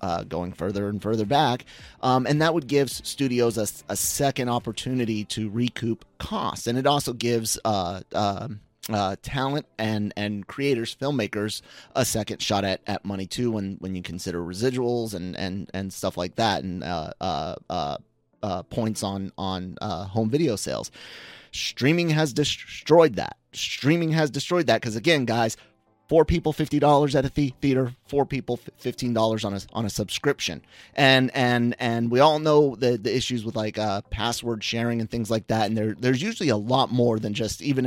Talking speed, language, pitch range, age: 185 wpm, English, 105-130 Hz, 30-49